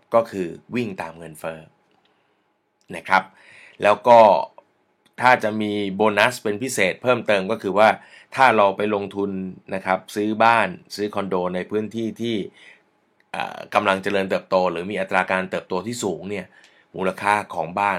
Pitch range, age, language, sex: 90-110 Hz, 20-39, Thai, male